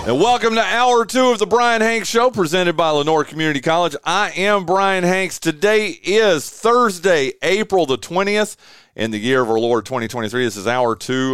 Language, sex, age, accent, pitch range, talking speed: English, male, 30-49, American, 125-180 Hz, 190 wpm